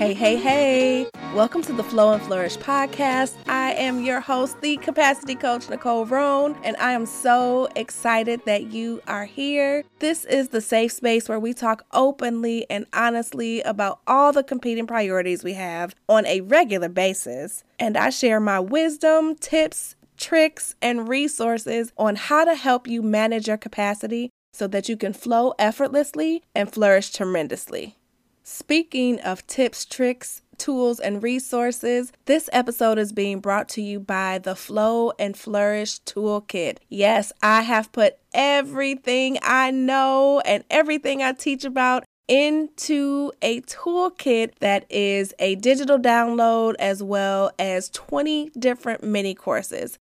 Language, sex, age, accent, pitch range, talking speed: English, female, 20-39, American, 215-275 Hz, 145 wpm